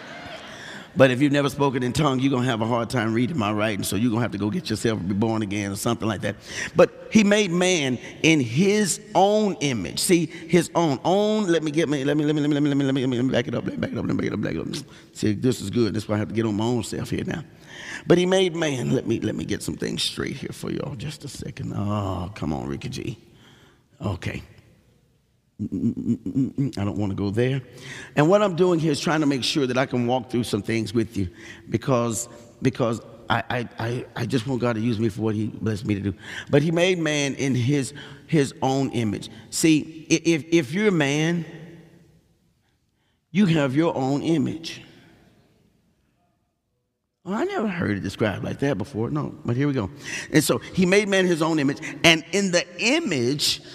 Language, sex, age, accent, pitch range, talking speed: English, male, 50-69, American, 115-160 Hz, 235 wpm